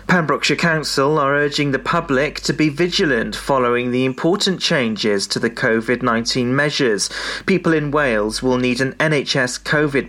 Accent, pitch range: British, 125-160 Hz